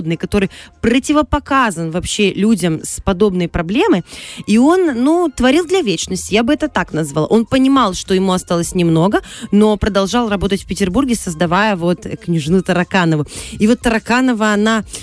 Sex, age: female, 20-39